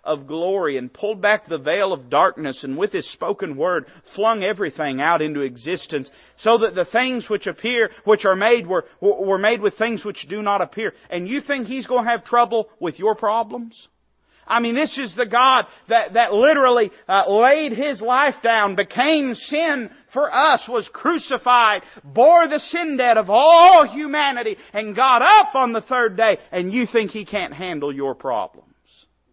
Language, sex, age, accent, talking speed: English, male, 40-59, American, 185 wpm